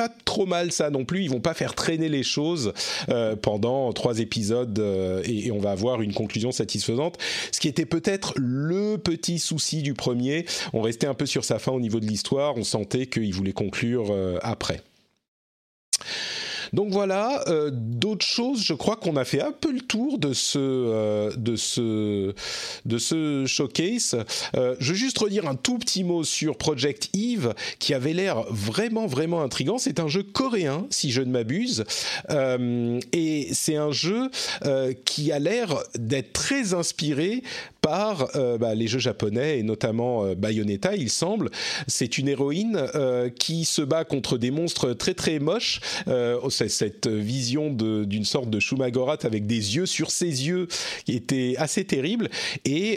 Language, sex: French, male